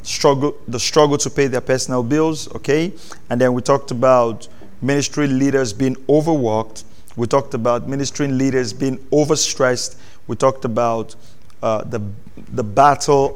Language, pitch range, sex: English, 115-140 Hz, male